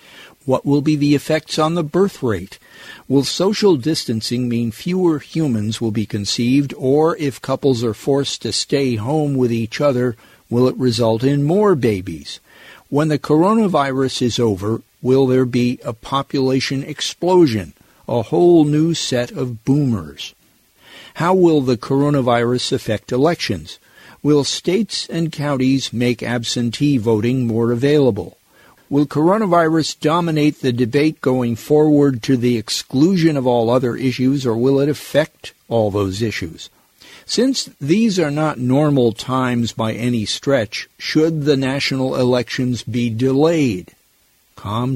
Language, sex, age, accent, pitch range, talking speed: English, male, 50-69, American, 115-150 Hz, 140 wpm